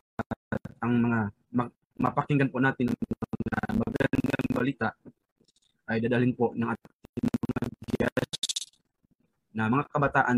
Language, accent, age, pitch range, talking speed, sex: Filipino, native, 20-39, 110-130 Hz, 115 wpm, male